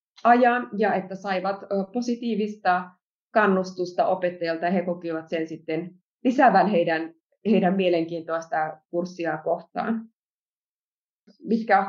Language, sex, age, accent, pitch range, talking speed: Finnish, female, 30-49, native, 175-225 Hz, 95 wpm